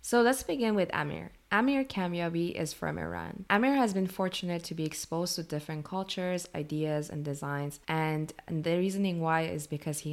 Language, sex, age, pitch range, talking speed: English, female, 20-39, 150-180 Hz, 180 wpm